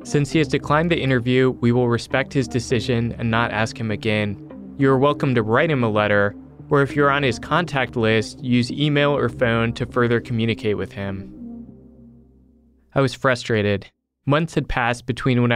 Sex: male